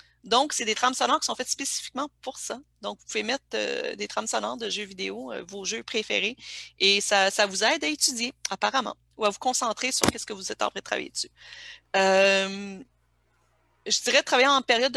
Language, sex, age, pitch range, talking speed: French, female, 40-59, 185-240 Hz, 215 wpm